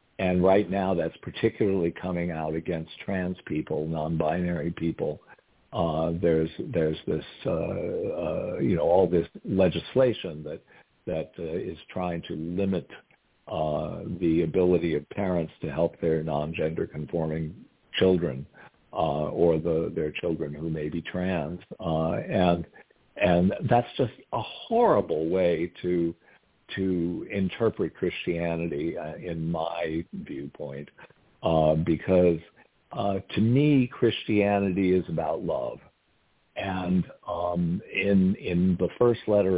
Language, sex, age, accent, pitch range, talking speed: English, male, 60-79, American, 80-95 Hz, 125 wpm